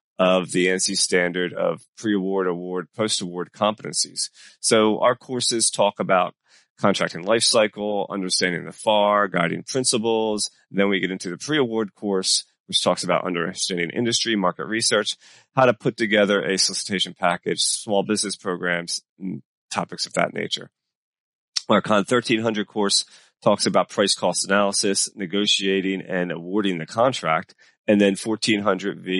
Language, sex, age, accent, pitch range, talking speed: English, male, 30-49, American, 95-110 Hz, 140 wpm